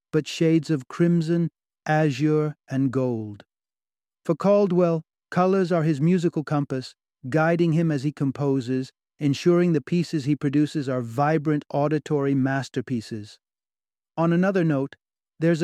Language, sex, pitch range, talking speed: English, male, 130-155 Hz, 125 wpm